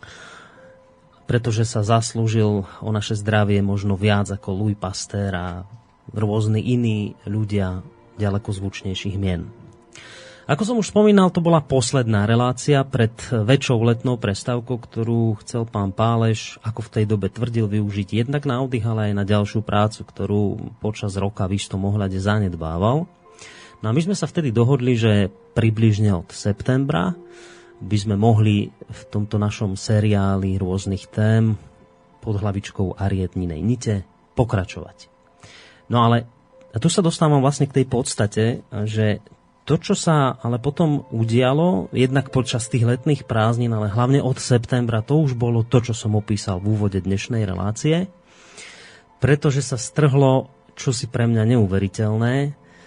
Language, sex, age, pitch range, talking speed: Slovak, male, 30-49, 105-130 Hz, 140 wpm